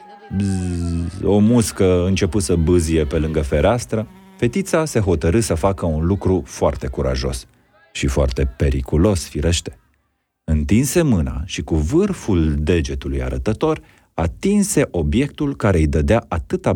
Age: 40-59